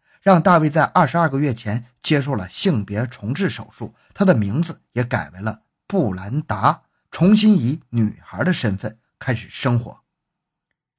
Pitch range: 110-165 Hz